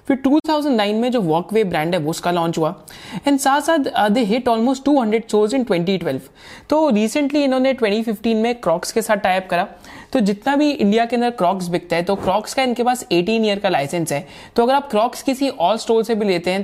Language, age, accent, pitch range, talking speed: Hindi, 30-49, native, 185-250 Hz, 220 wpm